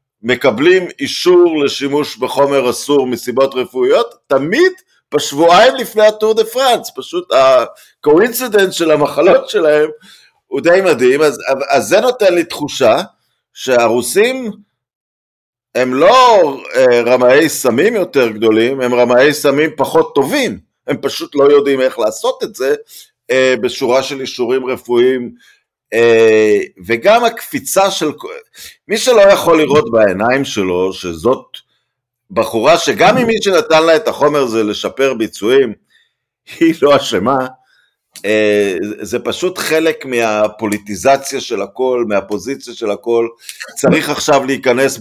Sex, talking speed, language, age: male, 120 wpm, Hebrew, 50-69